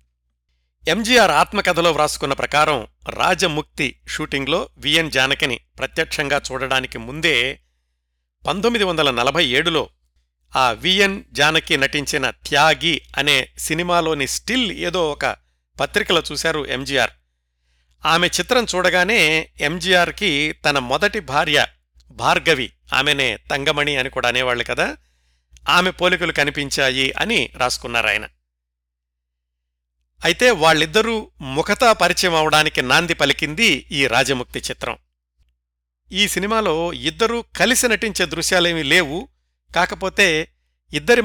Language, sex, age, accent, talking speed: Telugu, male, 50-69, native, 95 wpm